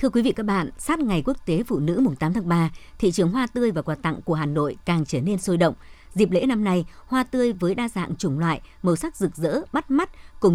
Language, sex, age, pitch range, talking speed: Vietnamese, male, 60-79, 165-220 Hz, 265 wpm